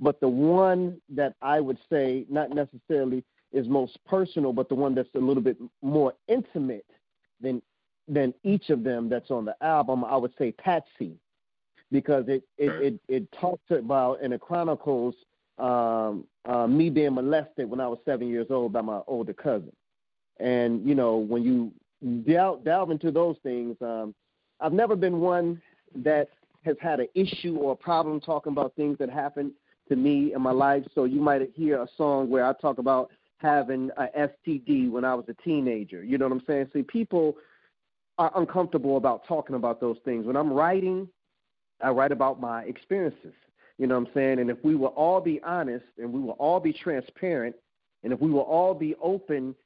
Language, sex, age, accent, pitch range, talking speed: English, male, 30-49, American, 130-160 Hz, 190 wpm